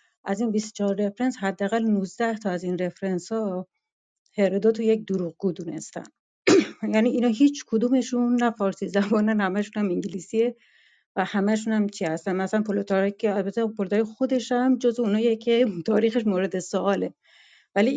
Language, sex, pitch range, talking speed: Persian, female, 185-225 Hz, 145 wpm